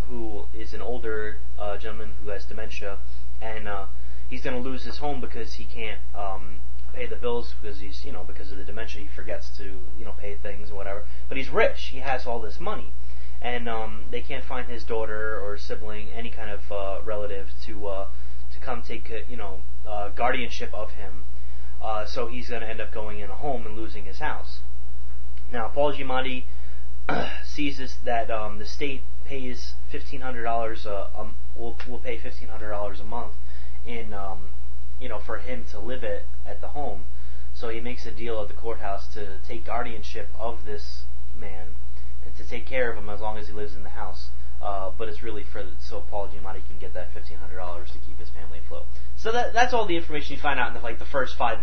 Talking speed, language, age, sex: 215 wpm, English, 20-39, male